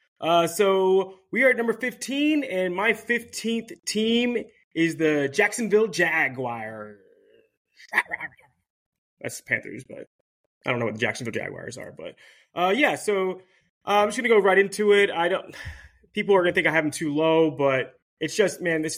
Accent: American